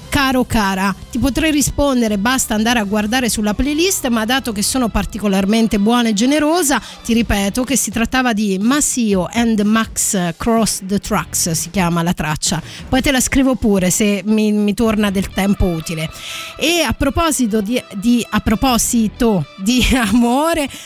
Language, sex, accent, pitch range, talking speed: Italian, female, native, 205-255 Hz, 160 wpm